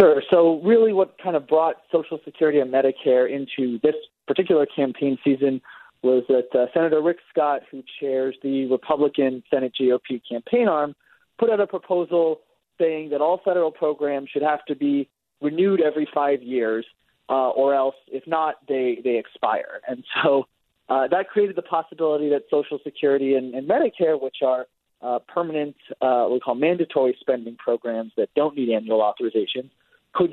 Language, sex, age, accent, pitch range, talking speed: English, male, 40-59, American, 135-175 Hz, 170 wpm